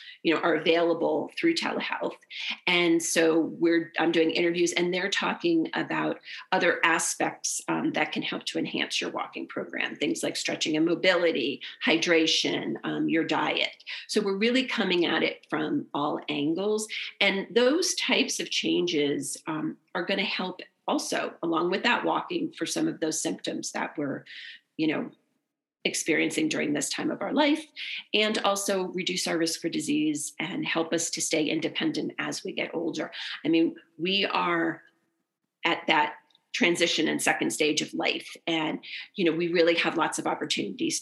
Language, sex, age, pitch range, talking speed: English, female, 40-59, 165-260 Hz, 165 wpm